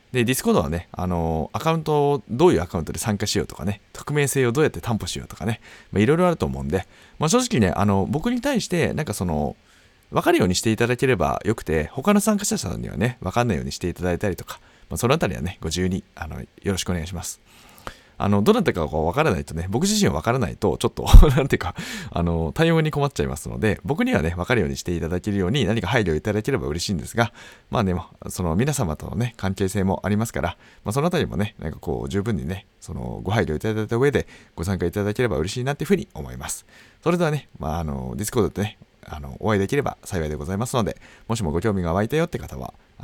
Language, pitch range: Japanese, 85-125 Hz